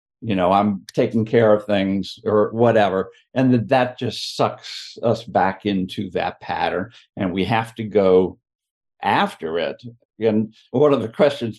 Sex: male